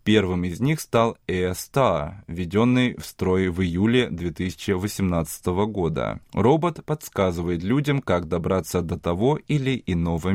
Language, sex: Russian, male